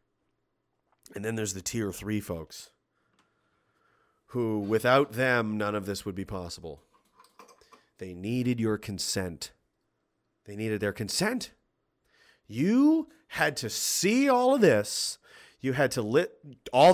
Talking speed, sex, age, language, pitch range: 130 wpm, male, 30-49, English, 125-185 Hz